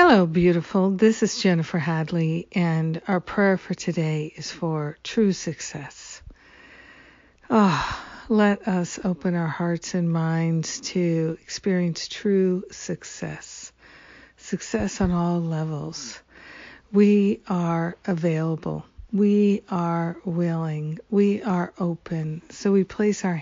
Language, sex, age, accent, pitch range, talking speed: English, female, 50-69, American, 170-195 Hz, 115 wpm